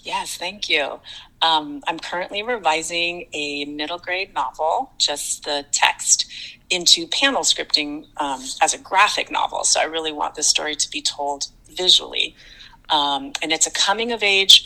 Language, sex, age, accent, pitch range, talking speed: English, female, 30-49, American, 150-185 Hz, 150 wpm